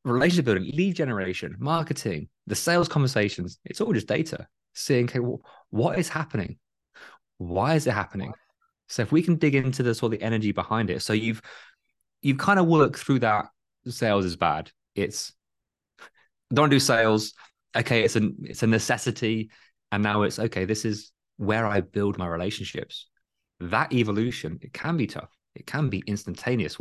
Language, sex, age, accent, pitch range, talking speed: English, male, 20-39, British, 100-125 Hz, 165 wpm